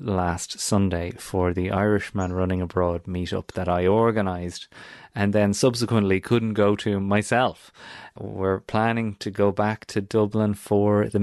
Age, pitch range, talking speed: 30-49, 95-110 Hz, 150 wpm